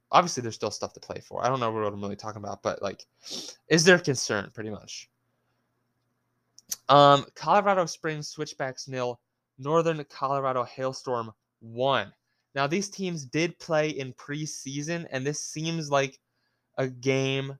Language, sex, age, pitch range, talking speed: English, male, 20-39, 120-150 Hz, 150 wpm